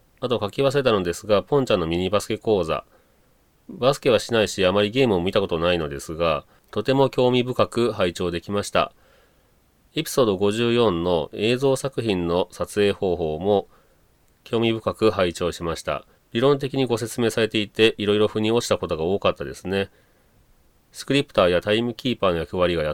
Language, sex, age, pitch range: Japanese, male, 40-59, 90-115 Hz